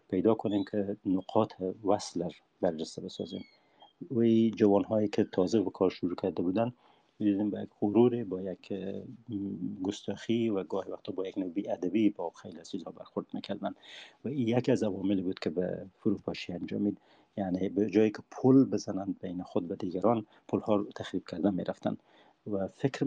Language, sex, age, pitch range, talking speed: Persian, male, 50-69, 95-110 Hz, 170 wpm